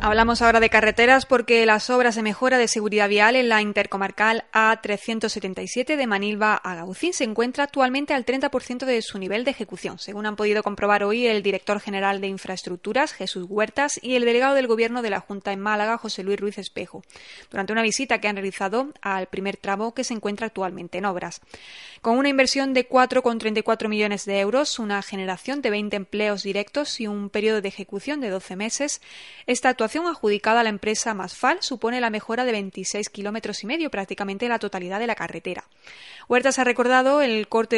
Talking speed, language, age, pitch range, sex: 190 wpm, Spanish, 20-39, 200-245 Hz, female